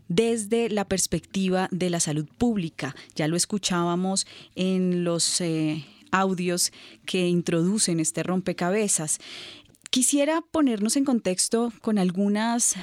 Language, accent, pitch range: Spanish, Colombian, 170-220 Hz